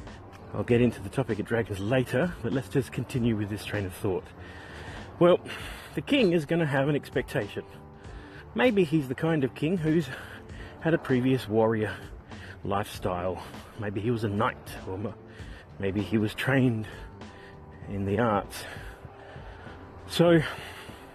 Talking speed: 150 wpm